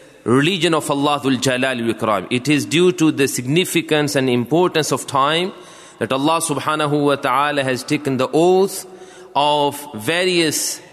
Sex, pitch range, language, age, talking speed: male, 150-195 Hz, English, 30-49, 130 wpm